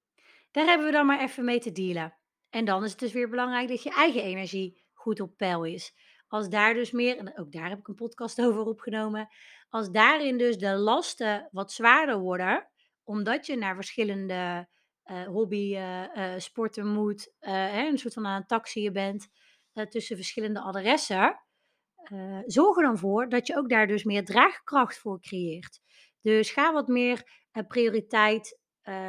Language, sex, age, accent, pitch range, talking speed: Dutch, female, 30-49, Dutch, 195-250 Hz, 180 wpm